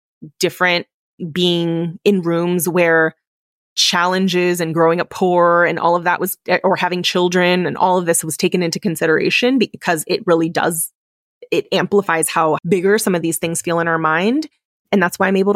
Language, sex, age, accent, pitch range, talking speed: English, female, 20-39, American, 160-185 Hz, 180 wpm